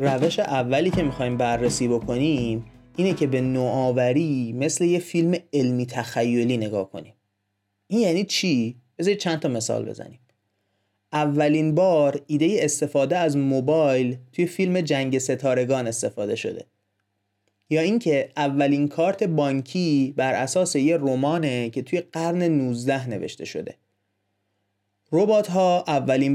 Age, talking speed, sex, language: 30-49, 125 wpm, male, Persian